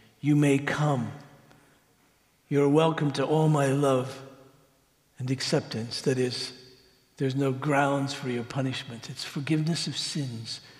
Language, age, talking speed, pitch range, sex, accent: English, 50-69, 130 wpm, 140-175 Hz, male, American